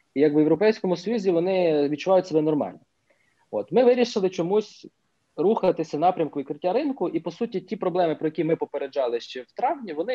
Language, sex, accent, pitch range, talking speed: Ukrainian, male, native, 135-180 Hz, 185 wpm